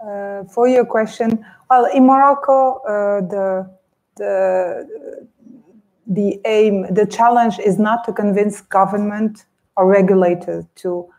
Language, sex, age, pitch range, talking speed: English, female, 30-49, 190-220 Hz, 120 wpm